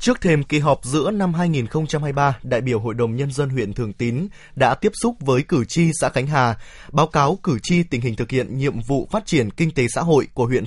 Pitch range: 135-175 Hz